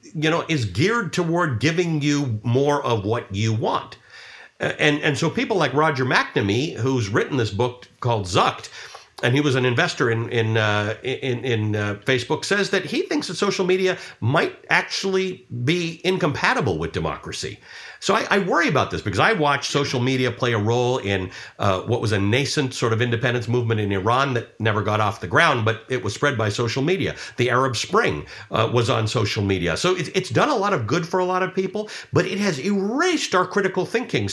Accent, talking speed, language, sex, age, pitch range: American, 205 wpm, English, male, 50-69, 115-175 Hz